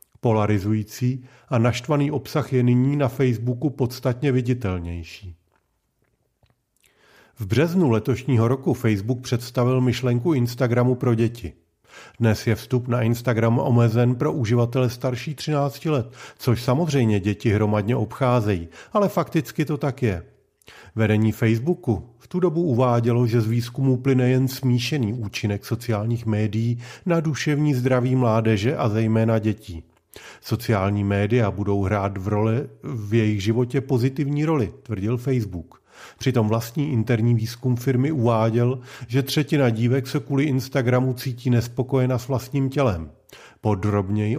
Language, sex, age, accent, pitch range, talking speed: Czech, male, 40-59, native, 110-135 Hz, 125 wpm